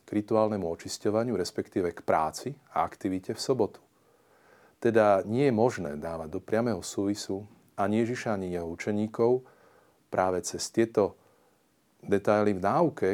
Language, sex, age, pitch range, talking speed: Slovak, male, 40-59, 95-110 Hz, 130 wpm